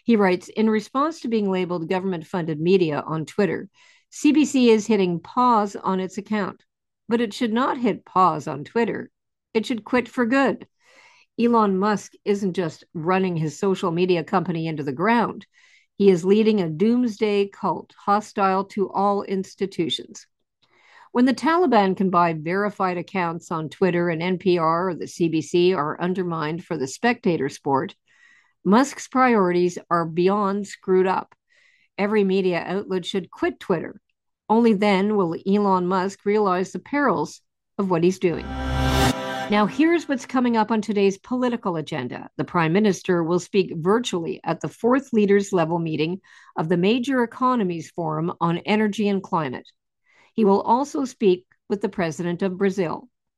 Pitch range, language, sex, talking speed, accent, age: 175-225 Hz, English, female, 155 wpm, American, 50-69